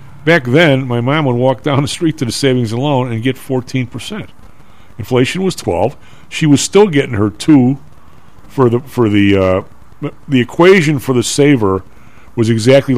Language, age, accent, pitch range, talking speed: English, 50-69, American, 105-140 Hz, 175 wpm